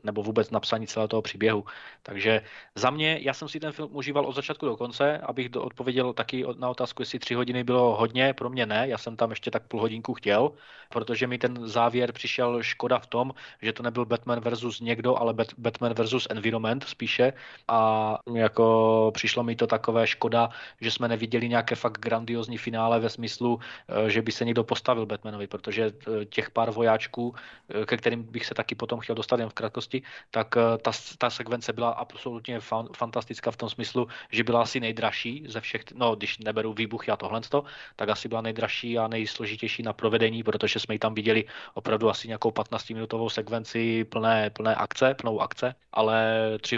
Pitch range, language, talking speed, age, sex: 110-120 Hz, Czech, 185 wpm, 20-39, male